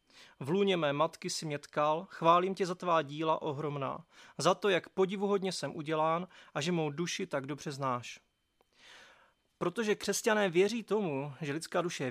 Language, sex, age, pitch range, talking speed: Czech, male, 30-49, 155-185 Hz, 165 wpm